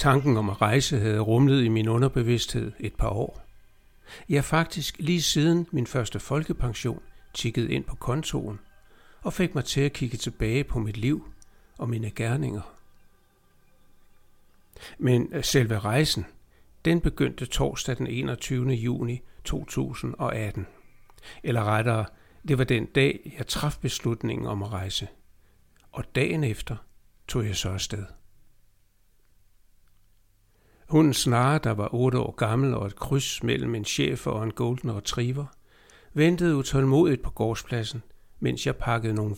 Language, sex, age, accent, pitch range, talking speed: Danish, male, 60-79, native, 105-135 Hz, 140 wpm